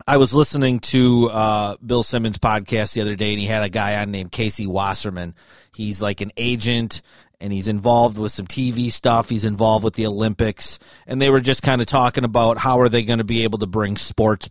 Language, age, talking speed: English, 30-49, 225 wpm